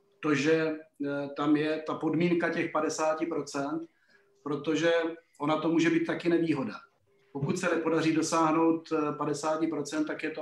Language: Slovak